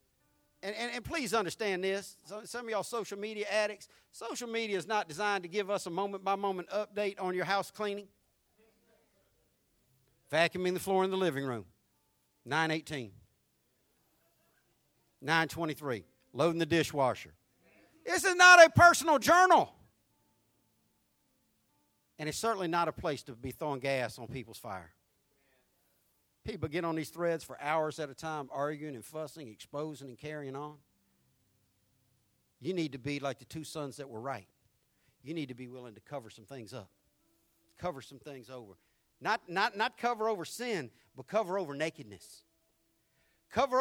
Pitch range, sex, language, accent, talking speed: 130-195 Hz, male, English, American, 150 wpm